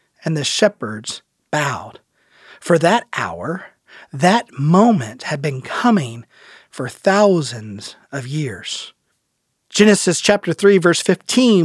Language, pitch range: English, 165-205 Hz